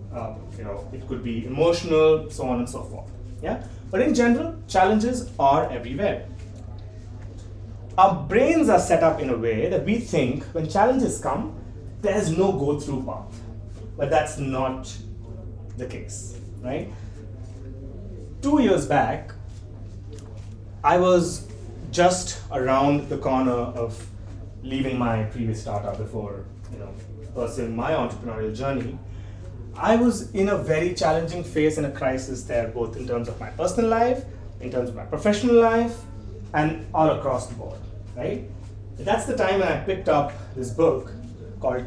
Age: 30-49